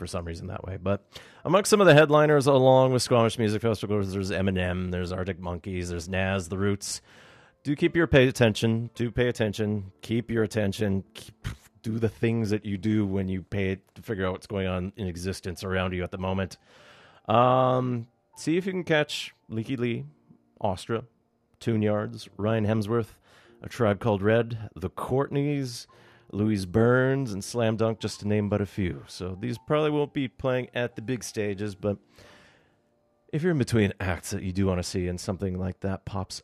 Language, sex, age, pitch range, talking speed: English, male, 30-49, 95-120 Hz, 195 wpm